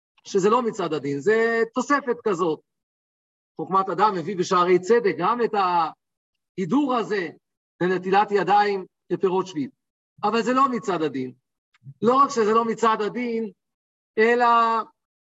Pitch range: 190-240 Hz